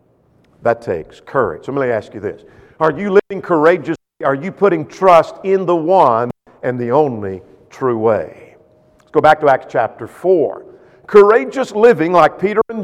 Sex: male